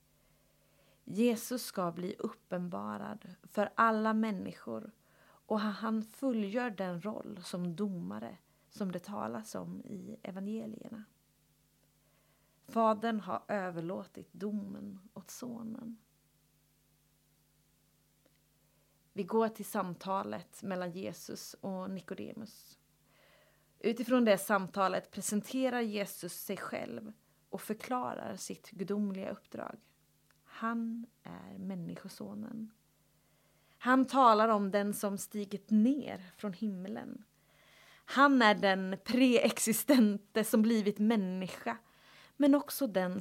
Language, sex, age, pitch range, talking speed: Swedish, female, 30-49, 195-230 Hz, 95 wpm